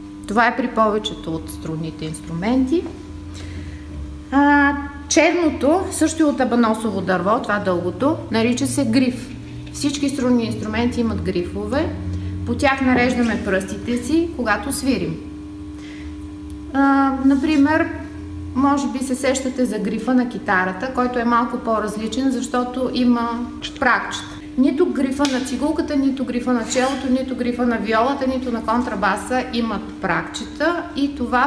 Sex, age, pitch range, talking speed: female, 30-49, 190-260 Hz, 130 wpm